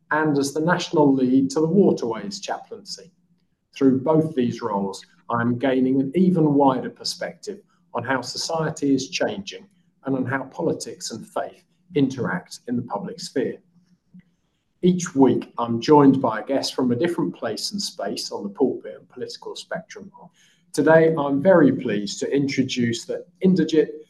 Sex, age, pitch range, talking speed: male, 40-59, 135-175 Hz, 155 wpm